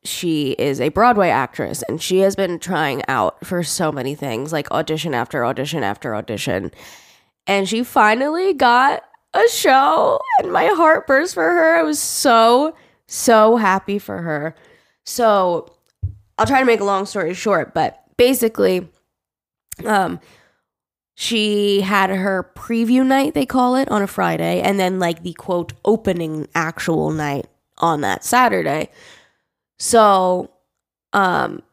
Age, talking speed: 10-29, 145 wpm